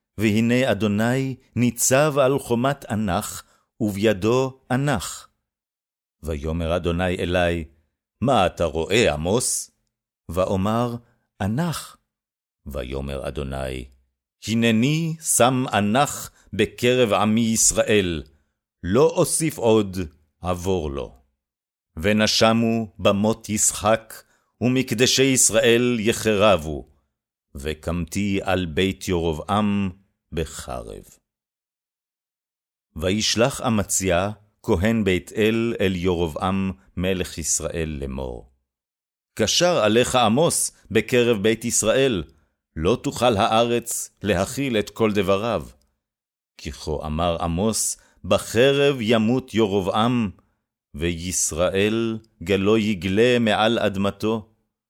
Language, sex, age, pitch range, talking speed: Hebrew, male, 50-69, 85-115 Hz, 85 wpm